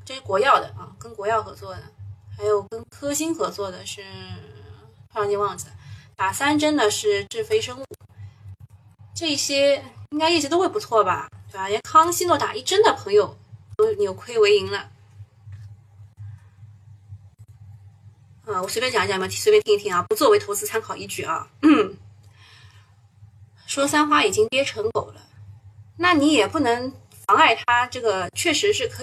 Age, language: 20-39, Chinese